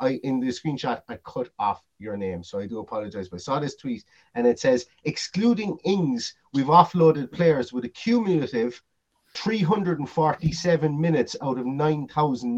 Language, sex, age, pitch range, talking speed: English, male, 30-49, 125-160 Hz, 155 wpm